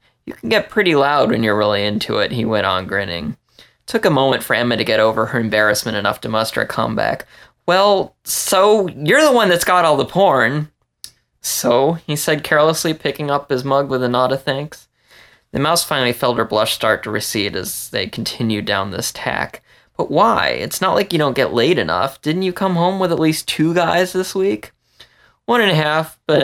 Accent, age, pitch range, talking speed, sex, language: American, 20-39, 110-175 Hz, 215 wpm, male, English